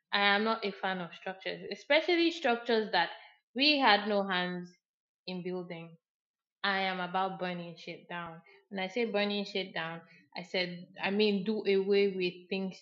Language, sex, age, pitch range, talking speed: English, female, 20-39, 185-220 Hz, 165 wpm